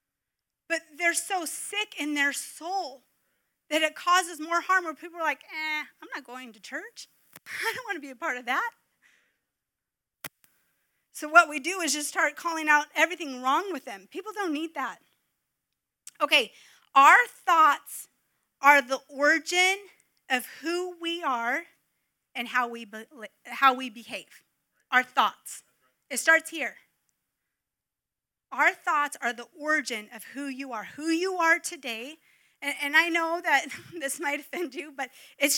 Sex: female